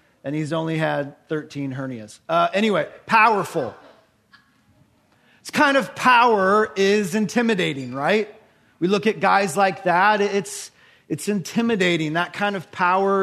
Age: 40-59